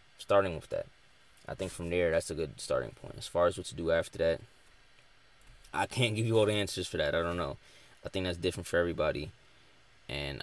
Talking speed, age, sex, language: 225 wpm, 20-39, male, English